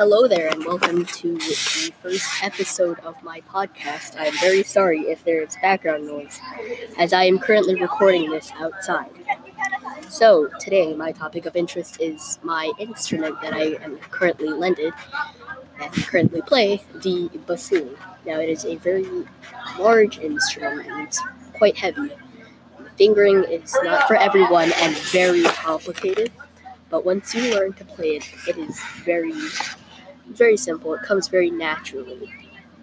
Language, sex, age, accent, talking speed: English, female, 20-39, American, 150 wpm